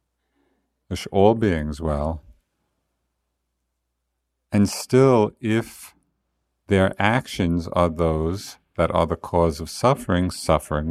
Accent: American